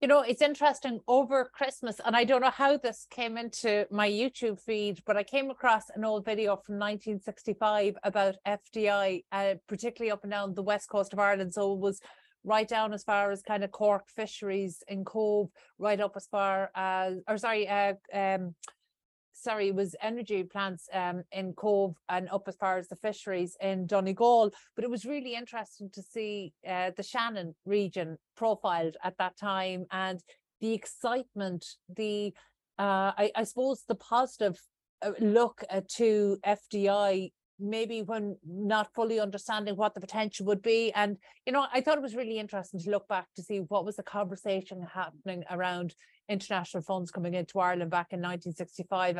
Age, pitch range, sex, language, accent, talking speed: 30-49, 190-220 Hz, female, English, Irish, 175 wpm